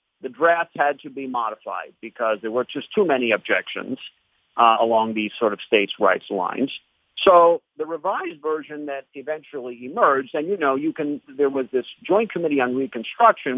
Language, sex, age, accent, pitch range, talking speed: English, male, 50-69, American, 115-145 Hz, 175 wpm